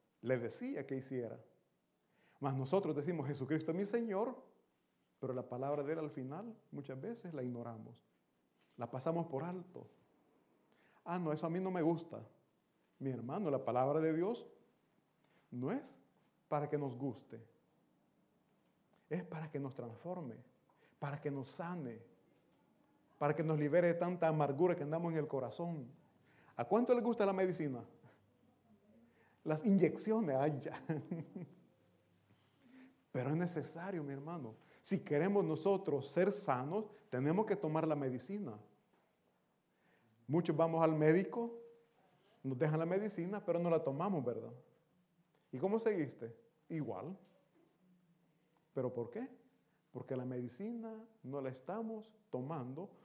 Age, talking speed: 40-59, 140 wpm